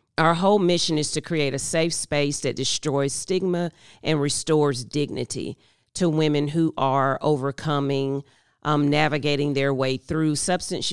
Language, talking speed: English, 145 wpm